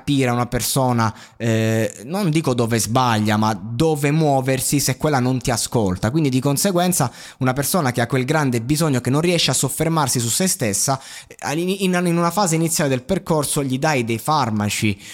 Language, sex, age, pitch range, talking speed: Italian, male, 20-39, 115-155 Hz, 170 wpm